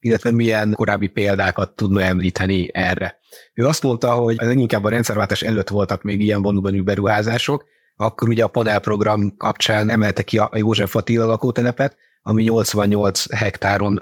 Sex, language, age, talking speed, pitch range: male, Hungarian, 30-49, 145 wpm, 100-120 Hz